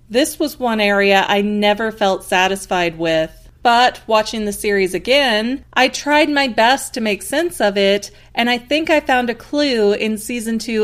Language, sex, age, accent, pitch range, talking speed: English, female, 40-59, American, 205-265 Hz, 185 wpm